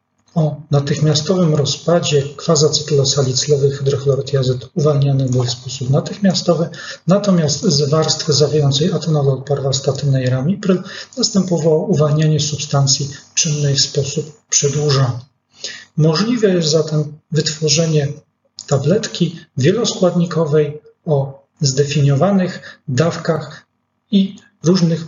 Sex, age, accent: male, 40-59, native